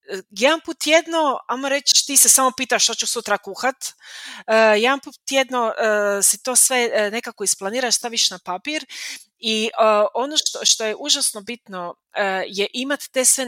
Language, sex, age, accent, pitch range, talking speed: Croatian, female, 30-49, native, 200-255 Hz, 175 wpm